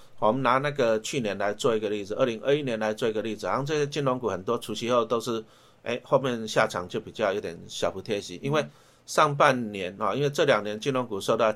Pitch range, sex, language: 110-140 Hz, male, Chinese